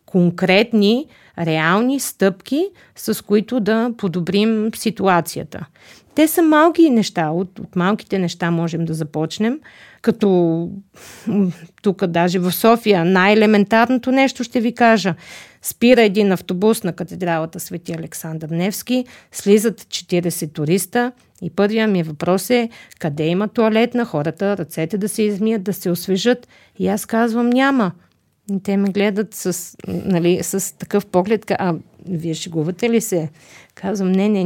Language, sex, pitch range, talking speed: Bulgarian, female, 170-215 Hz, 135 wpm